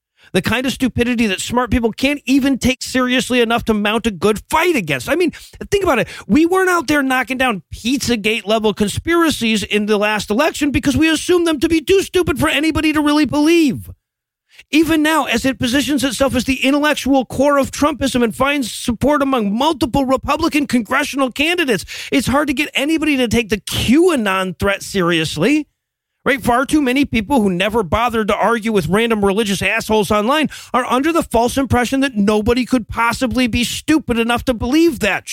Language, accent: English, American